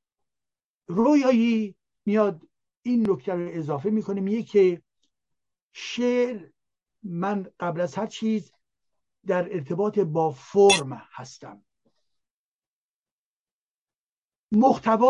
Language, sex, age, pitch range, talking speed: Persian, male, 60-79, 165-230 Hz, 85 wpm